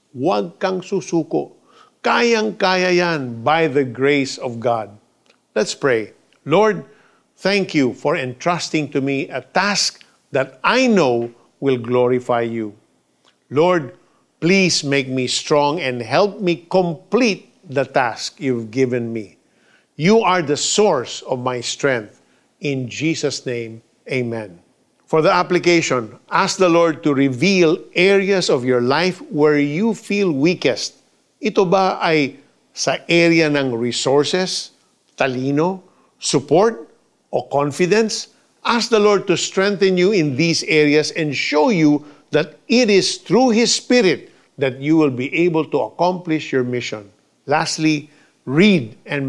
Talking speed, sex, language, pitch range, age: 135 wpm, male, Filipino, 130-180 Hz, 50-69